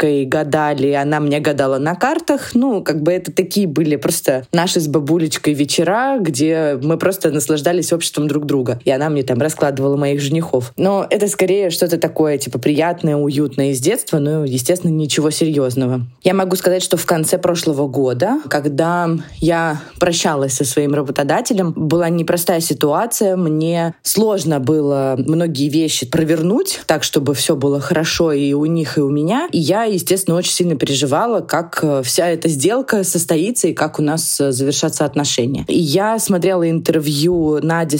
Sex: female